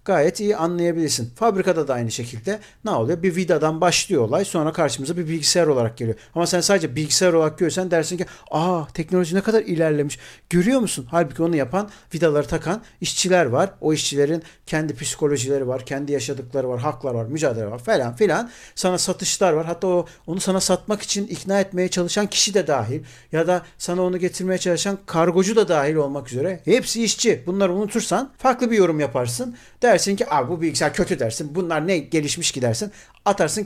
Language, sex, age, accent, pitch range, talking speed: Turkish, male, 50-69, native, 150-190 Hz, 180 wpm